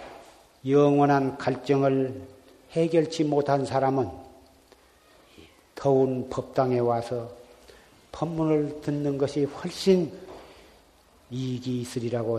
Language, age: Korean, 40-59